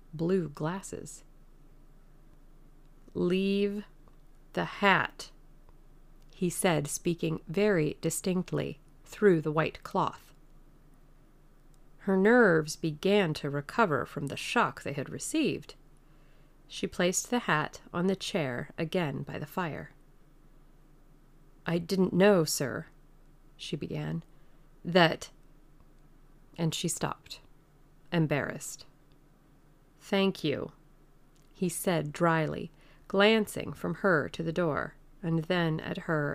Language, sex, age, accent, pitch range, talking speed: English, female, 40-59, American, 150-185 Hz, 100 wpm